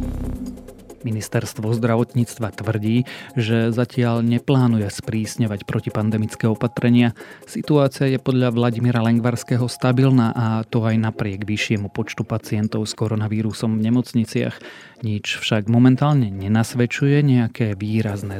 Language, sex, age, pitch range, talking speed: Slovak, male, 30-49, 105-125 Hz, 105 wpm